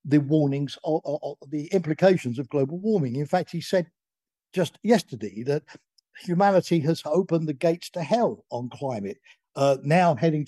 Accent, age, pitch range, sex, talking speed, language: British, 50-69, 130-175 Hz, male, 155 wpm, English